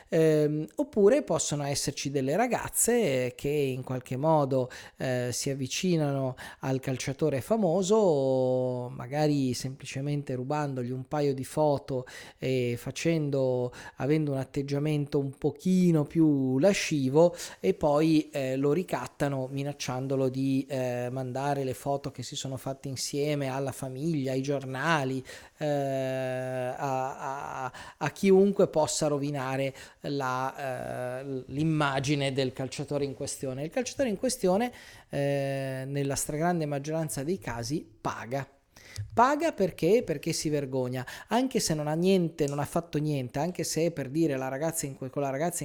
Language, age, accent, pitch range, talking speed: Italian, 30-49, native, 130-155 Hz, 130 wpm